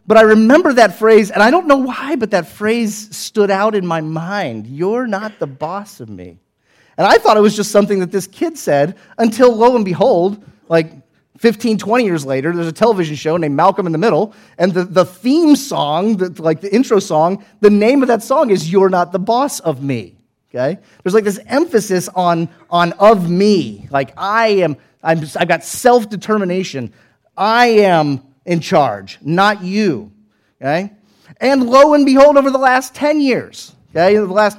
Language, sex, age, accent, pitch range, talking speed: English, male, 30-49, American, 155-215 Hz, 195 wpm